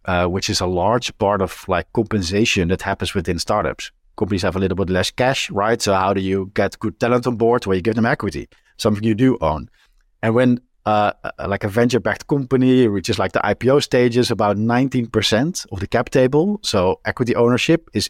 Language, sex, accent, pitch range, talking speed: English, male, Dutch, 100-125 Hz, 200 wpm